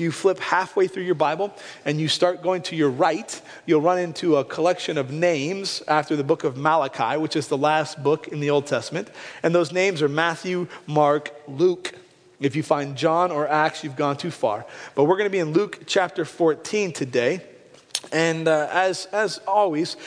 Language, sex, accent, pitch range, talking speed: English, male, American, 135-170 Hz, 195 wpm